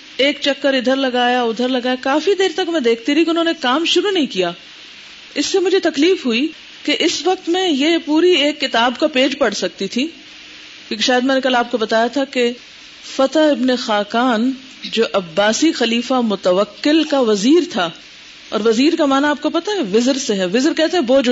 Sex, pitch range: female, 240-320 Hz